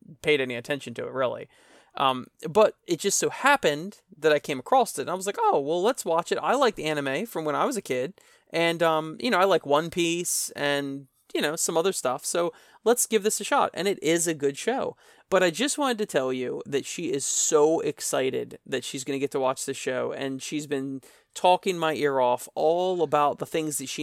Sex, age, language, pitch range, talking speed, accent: male, 30-49, English, 140-195 Hz, 240 wpm, American